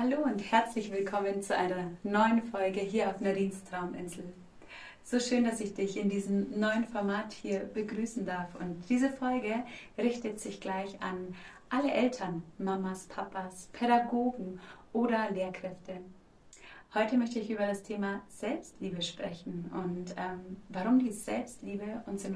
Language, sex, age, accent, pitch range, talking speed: German, female, 30-49, German, 185-230 Hz, 140 wpm